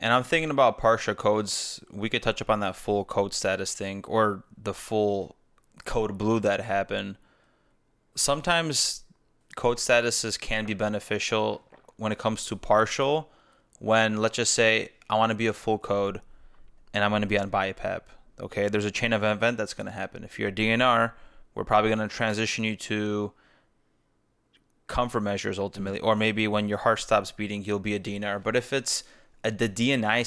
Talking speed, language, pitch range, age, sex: 185 wpm, English, 105-115 Hz, 20-39, male